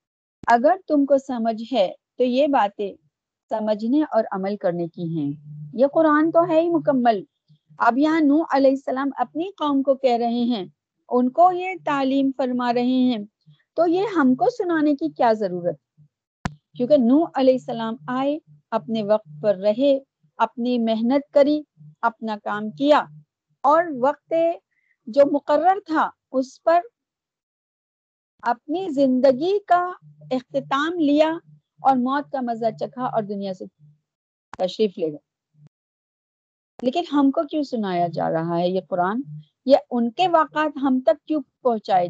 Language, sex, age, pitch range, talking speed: Urdu, female, 40-59, 205-305 Hz, 145 wpm